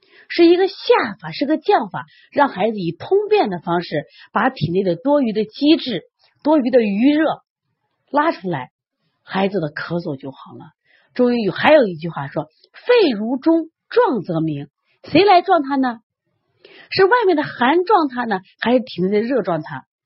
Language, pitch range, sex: Chinese, 175-275 Hz, female